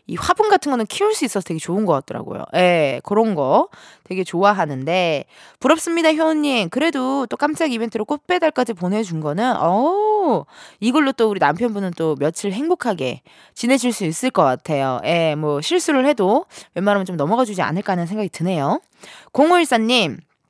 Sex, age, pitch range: female, 20-39, 180-275 Hz